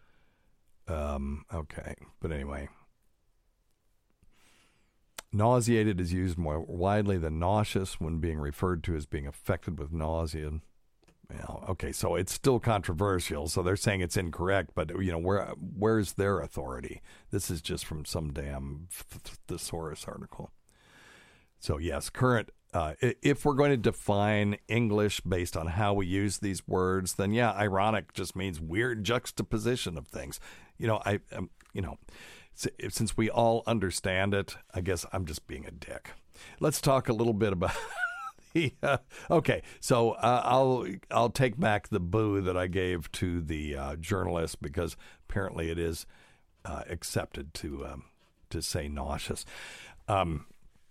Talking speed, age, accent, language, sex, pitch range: 150 wpm, 50-69, American, English, male, 80-110 Hz